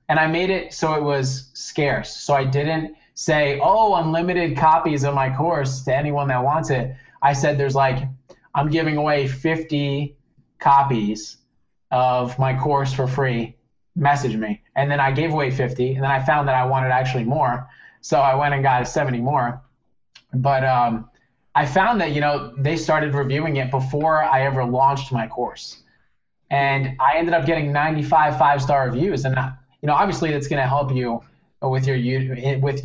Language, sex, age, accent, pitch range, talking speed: English, male, 20-39, American, 130-145 Hz, 180 wpm